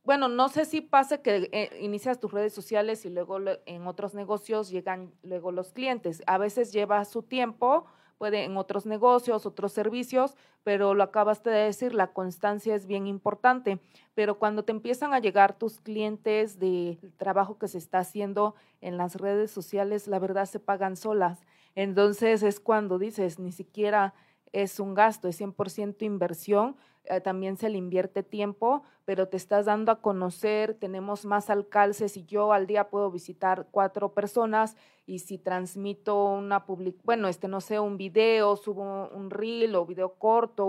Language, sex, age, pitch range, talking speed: Spanish, female, 30-49, 190-215 Hz, 170 wpm